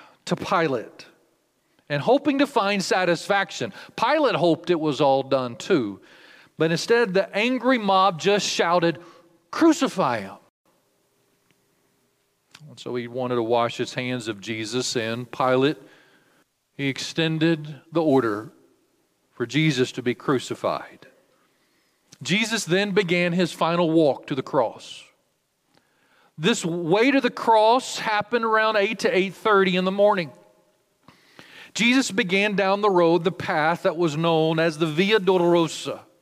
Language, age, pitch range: English, 40-59, 160-210 Hz